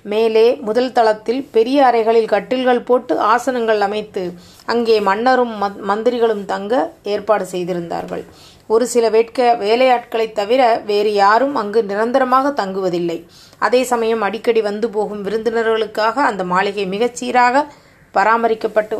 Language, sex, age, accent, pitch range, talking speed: Tamil, female, 30-49, native, 205-240 Hz, 110 wpm